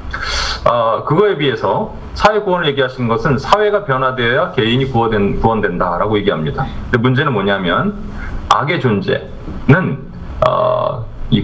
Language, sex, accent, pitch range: Korean, male, native, 115-185 Hz